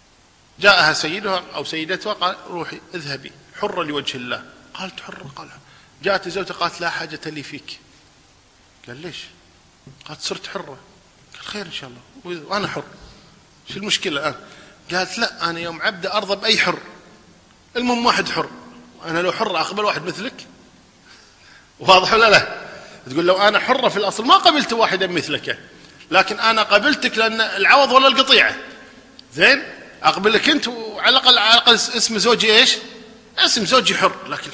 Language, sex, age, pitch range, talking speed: Arabic, male, 40-59, 155-225 Hz, 150 wpm